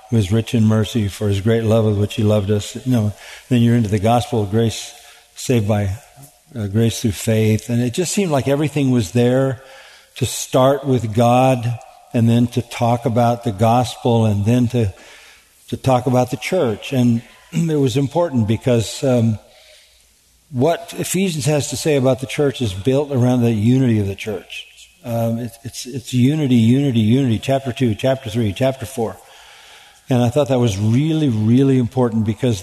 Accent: American